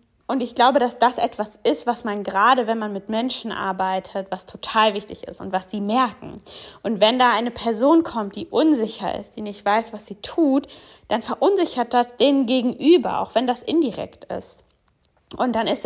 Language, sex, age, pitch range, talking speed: German, female, 20-39, 205-270 Hz, 195 wpm